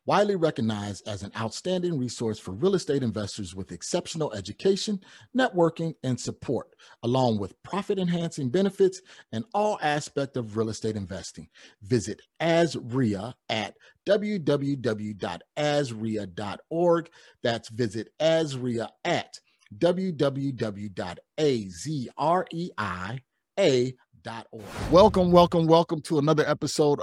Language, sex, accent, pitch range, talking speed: English, male, American, 115-155 Hz, 95 wpm